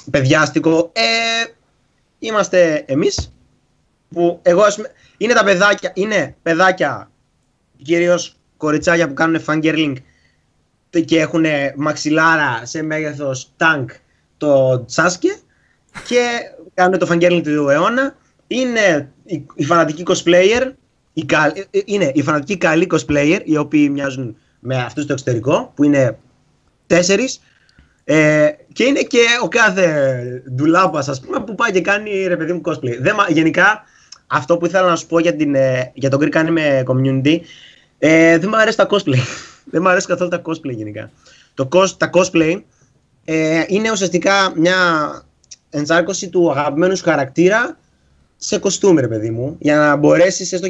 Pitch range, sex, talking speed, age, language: 145-185 Hz, male, 140 wpm, 20-39, Greek